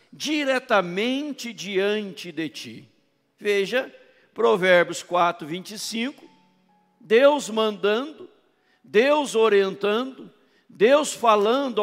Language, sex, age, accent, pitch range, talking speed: Portuguese, male, 60-79, Brazilian, 190-255 Hz, 65 wpm